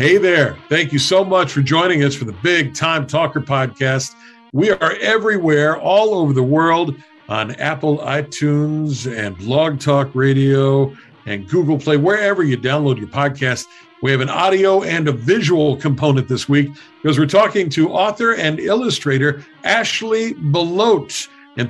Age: 60-79